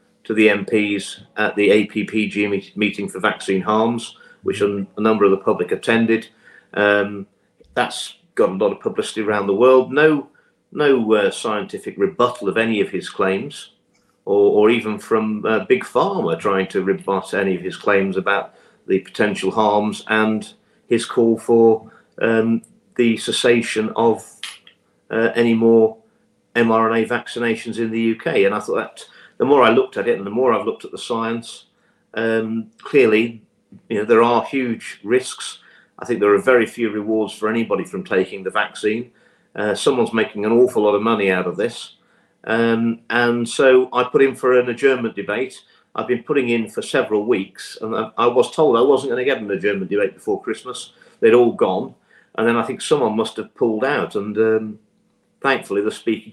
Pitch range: 105-120 Hz